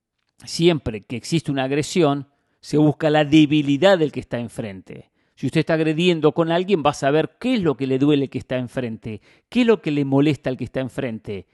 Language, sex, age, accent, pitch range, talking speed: English, male, 40-59, Argentinian, 130-160 Hz, 215 wpm